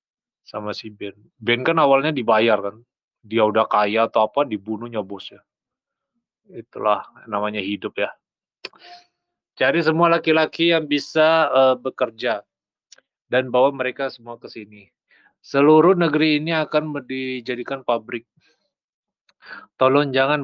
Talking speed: 115 wpm